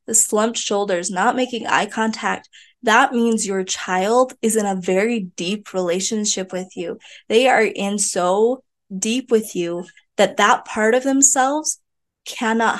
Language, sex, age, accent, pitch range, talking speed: English, female, 20-39, American, 190-230 Hz, 145 wpm